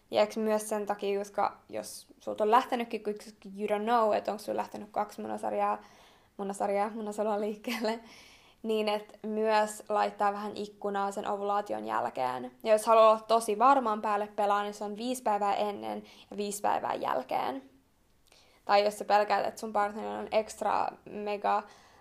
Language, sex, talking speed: English, female, 160 wpm